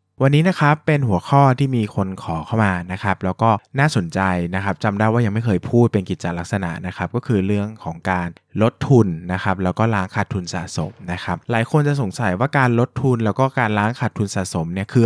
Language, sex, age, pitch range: Thai, male, 20-39, 95-120 Hz